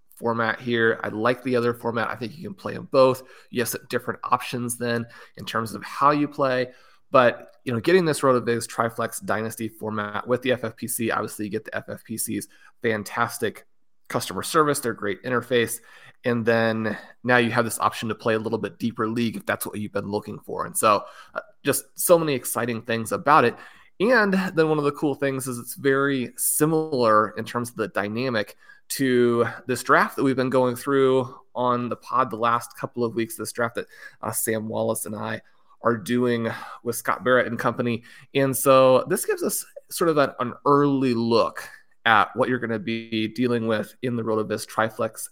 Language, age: English, 30-49